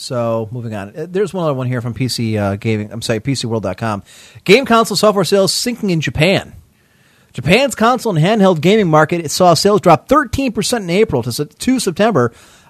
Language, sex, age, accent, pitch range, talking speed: English, male, 30-49, American, 140-195 Hz, 175 wpm